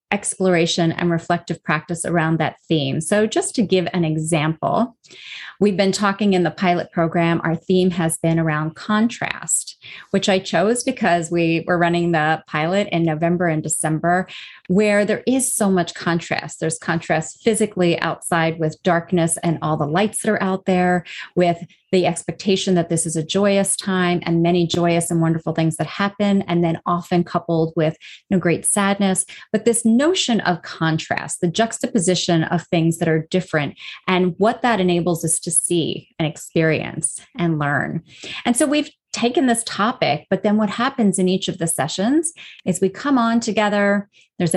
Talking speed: 175 wpm